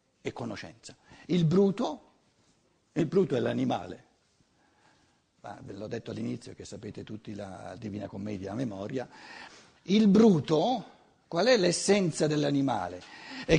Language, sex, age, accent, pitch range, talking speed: Italian, male, 50-69, native, 130-205 Hz, 120 wpm